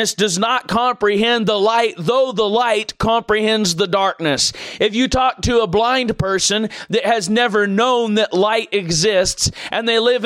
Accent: American